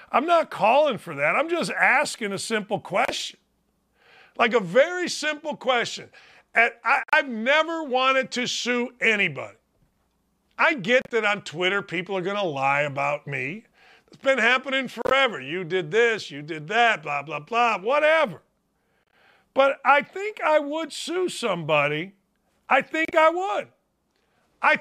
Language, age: English, 50-69